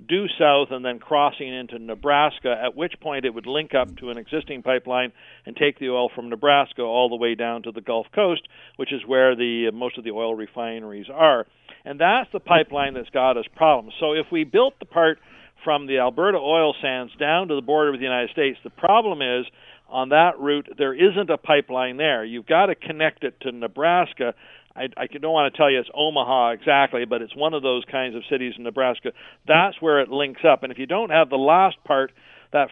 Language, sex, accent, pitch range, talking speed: English, male, American, 125-155 Hz, 220 wpm